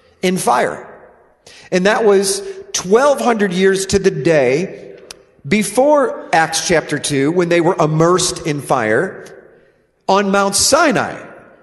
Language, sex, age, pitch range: English, male, 40-59, 190-235 Hz